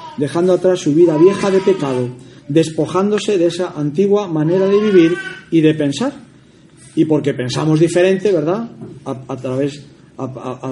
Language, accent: Spanish, Spanish